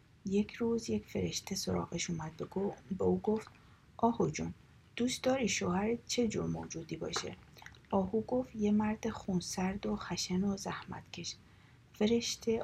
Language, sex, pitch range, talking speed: Persian, female, 180-225 Hz, 140 wpm